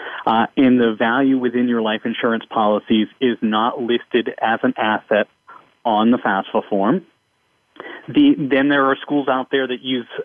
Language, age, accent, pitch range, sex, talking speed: English, 30-49, American, 115-145 Hz, male, 160 wpm